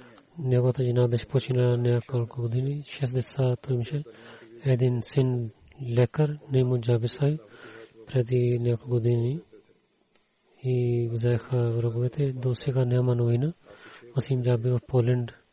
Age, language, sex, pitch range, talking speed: 30-49, Bulgarian, male, 115-130 Hz, 110 wpm